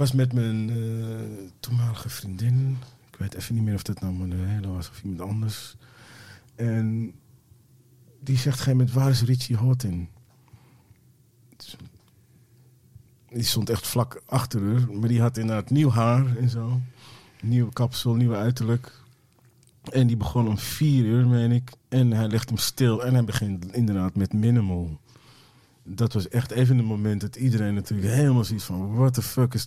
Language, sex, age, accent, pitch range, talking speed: Dutch, male, 40-59, Dutch, 110-125 Hz, 170 wpm